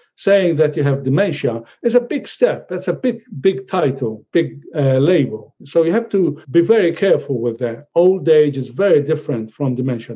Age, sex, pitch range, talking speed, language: 50-69, male, 135-175 Hz, 195 wpm, English